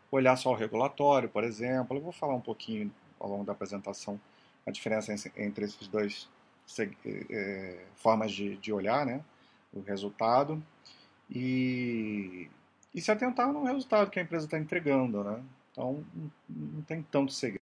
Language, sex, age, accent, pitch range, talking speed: Portuguese, male, 40-59, Brazilian, 105-145 Hz, 160 wpm